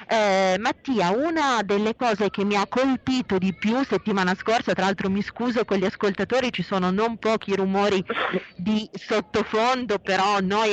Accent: native